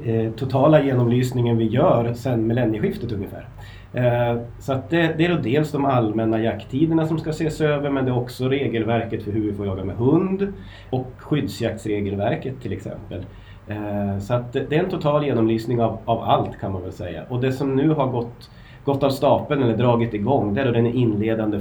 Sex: male